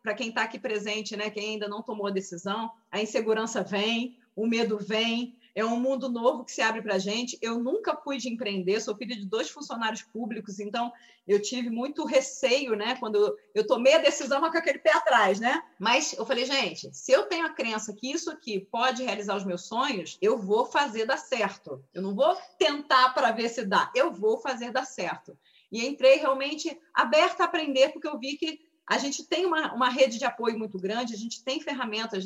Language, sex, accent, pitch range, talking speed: Portuguese, female, Brazilian, 220-305 Hz, 210 wpm